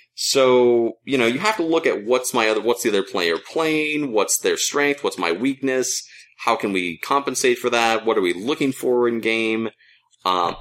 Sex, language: male, English